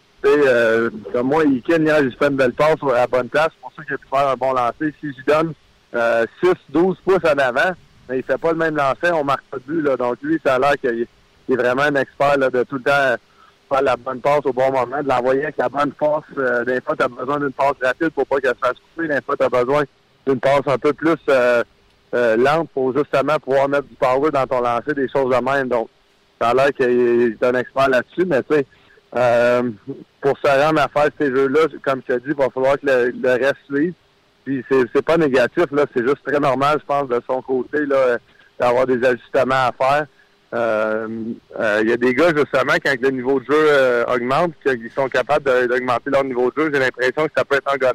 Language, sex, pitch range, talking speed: French, male, 125-145 Hz, 245 wpm